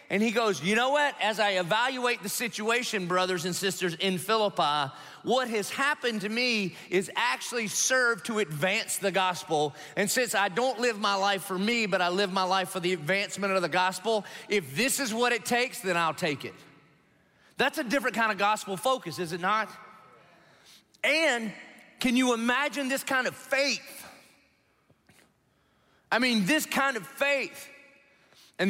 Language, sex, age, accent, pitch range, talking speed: English, male, 40-59, American, 175-225 Hz, 175 wpm